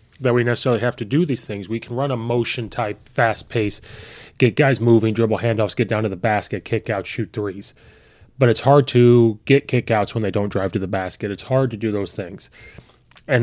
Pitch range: 110-130 Hz